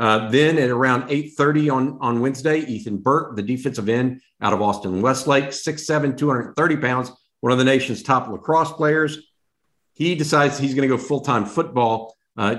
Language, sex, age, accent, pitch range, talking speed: English, male, 50-69, American, 115-140 Hz, 165 wpm